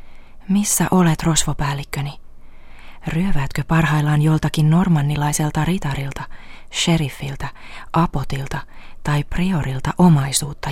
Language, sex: Finnish, female